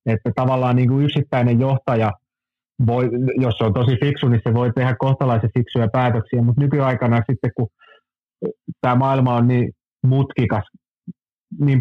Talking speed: 145 wpm